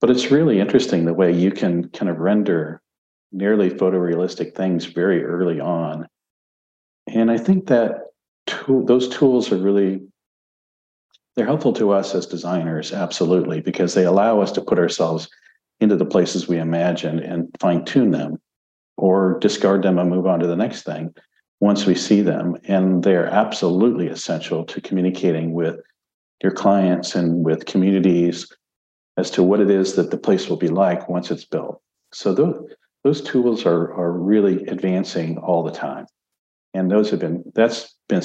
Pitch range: 85-100 Hz